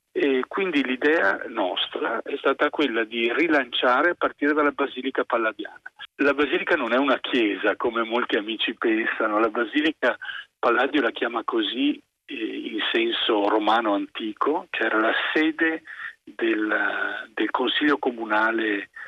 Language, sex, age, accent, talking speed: Italian, male, 40-59, native, 135 wpm